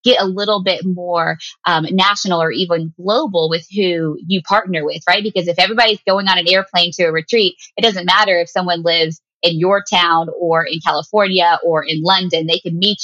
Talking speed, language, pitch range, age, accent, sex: 205 wpm, English, 165-205 Hz, 20-39, American, female